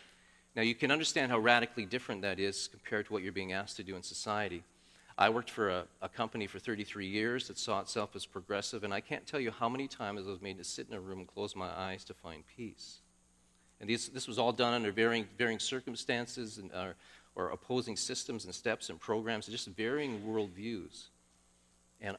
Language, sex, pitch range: English, male, 85-115 Hz